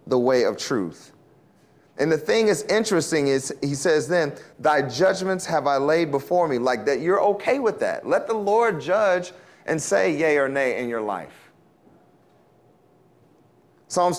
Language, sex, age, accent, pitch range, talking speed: English, male, 30-49, American, 125-175 Hz, 165 wpm